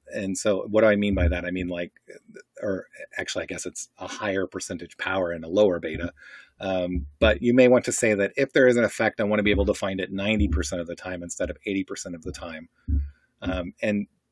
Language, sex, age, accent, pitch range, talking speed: English, male, 40-59, American, 95-120 Hz, 240 wpm